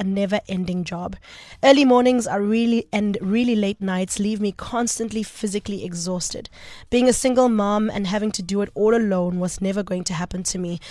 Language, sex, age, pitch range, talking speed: English, female, 20-39, 185-215 Hz, 180 wpm